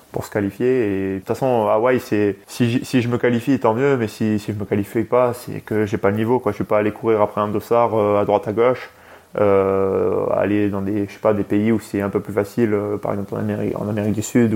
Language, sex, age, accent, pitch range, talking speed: French, male, 20-39, French, 100-120 Hz, 285 wpm